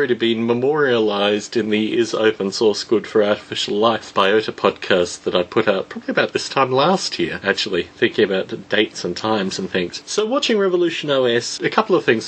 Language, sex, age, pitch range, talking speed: English, male, 30-49, 105-165 Hz, 195 wpm